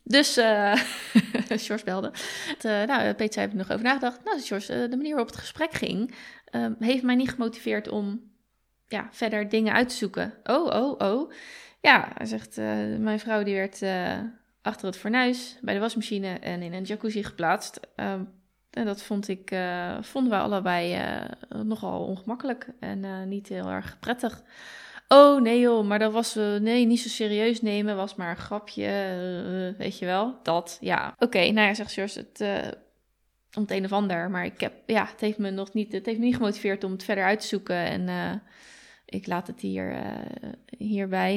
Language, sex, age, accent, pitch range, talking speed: Dutch, female, 20-39, Dutch, 195-235 Hz, 200 wpm